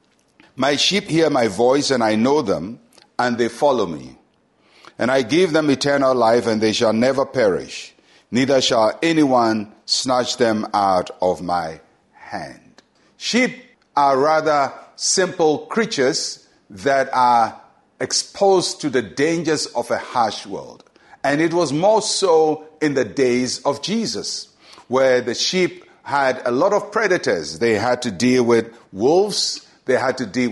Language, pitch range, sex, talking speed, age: English, 125-175 Hz, male, 150 wpm, 60-79